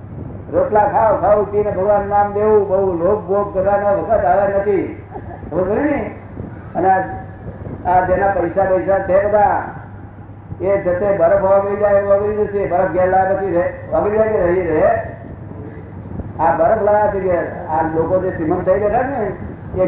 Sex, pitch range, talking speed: male, 140-205 Hz, 40 wpm